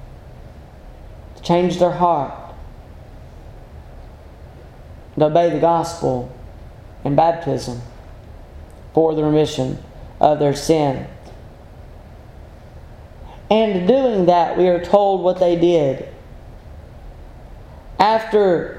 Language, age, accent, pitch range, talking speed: English, 40-59, American, 150-200 Hz, 85 wpm